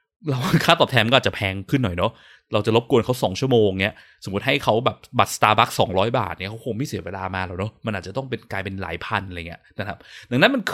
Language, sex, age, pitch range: Thai, male, 20-39, 95-130 Hz